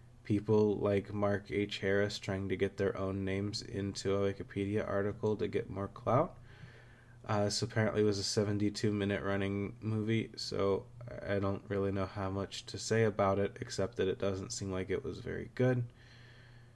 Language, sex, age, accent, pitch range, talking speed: English, male, 20-39, American, 100-120 Hz, 170 wpm